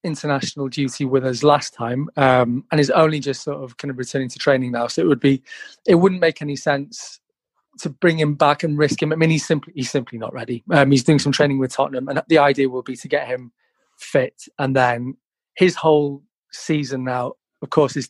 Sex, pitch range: male, 130-155 Hz